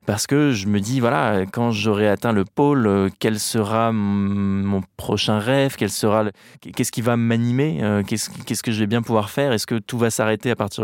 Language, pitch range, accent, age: French, 100-120 Hz, French, 20-39